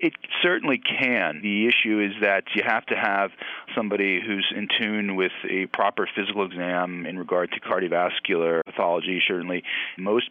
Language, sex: English, male